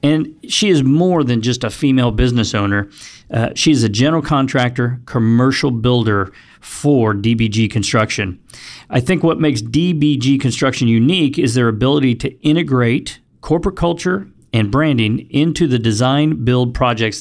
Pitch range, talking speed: 115-150 Hz, 145 wpm